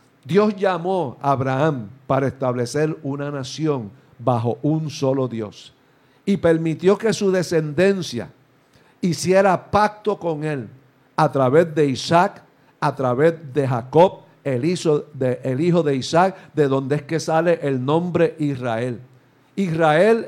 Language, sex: Spanish, male